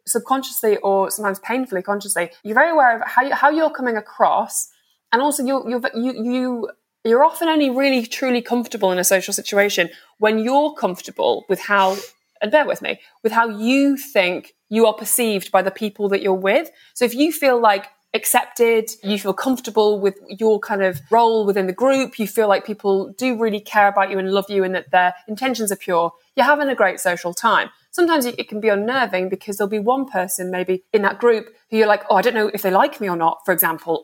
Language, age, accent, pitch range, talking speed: English, 20-39, British, 195-245 Hz, 210 wpm